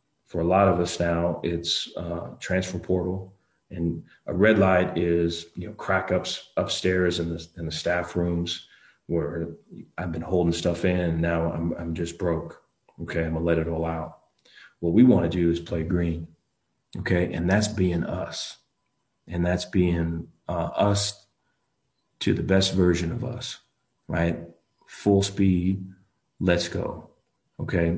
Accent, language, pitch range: American, English, 85-95 Hz